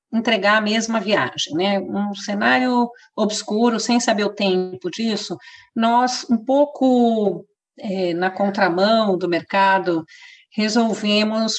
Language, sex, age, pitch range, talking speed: Portuguese, female, 40-59, 185-240 Hz, 110 wpm